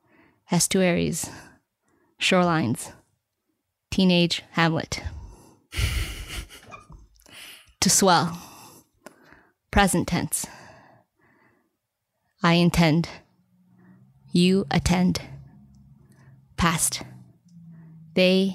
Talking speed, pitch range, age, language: 45 wpm, 160-185 Hz, 20-39, English